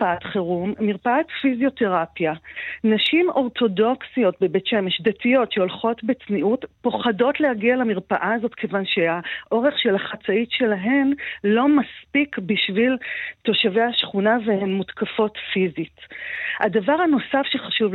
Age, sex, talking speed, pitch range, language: 40-59, female, 105 wpm, 195-255 Hz, Hebrew